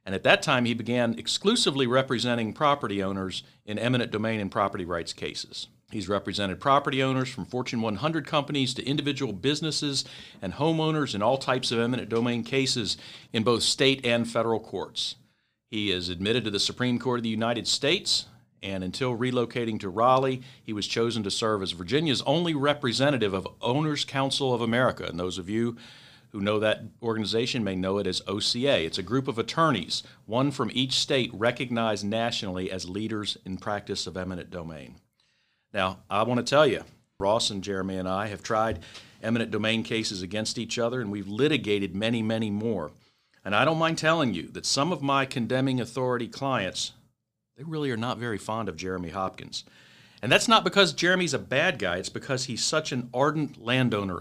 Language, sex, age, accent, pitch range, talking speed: English, male, 50-69, American, 100-130 Hz, 185 wpm